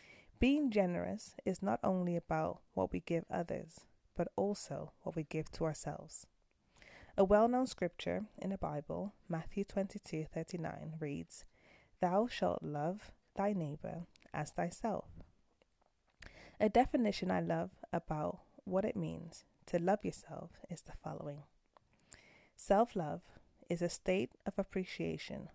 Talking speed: 135 wpm